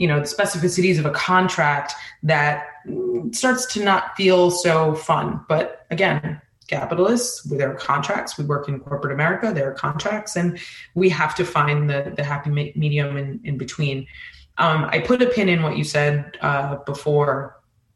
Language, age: English, 20-39